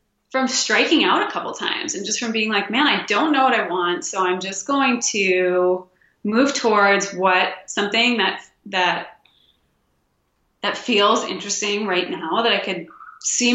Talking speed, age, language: 170 wpm, 20-39, English